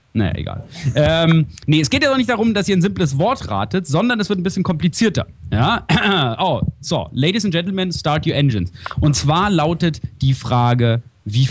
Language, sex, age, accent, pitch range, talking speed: English, male, 30-49, German, 115-165 Hz, 195 wpm